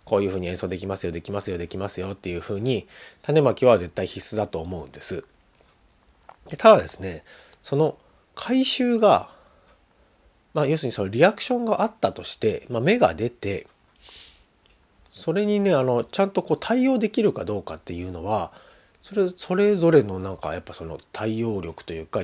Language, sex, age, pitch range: Japanese, male, 40-59, 95-150 Hz